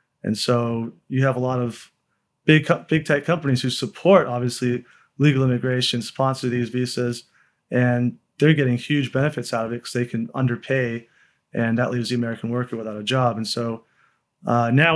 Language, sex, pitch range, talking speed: English, male, 120-135 Hz, 175 wpm